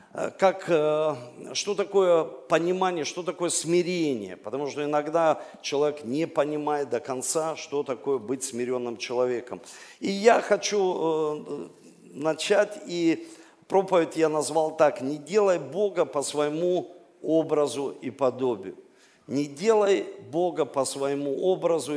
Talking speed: 115 wpm